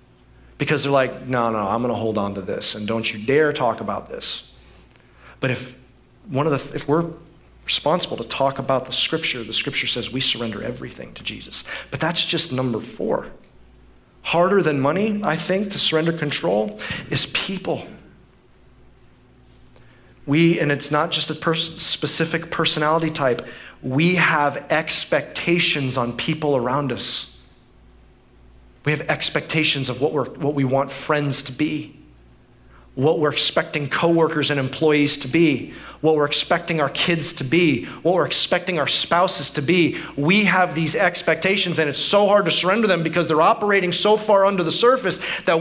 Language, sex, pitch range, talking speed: English, male, 140-200 Hz, 165 wpm